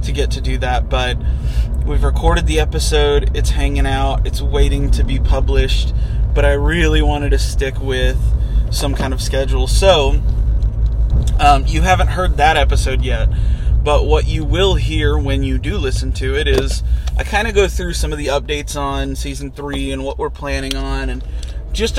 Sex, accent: male, American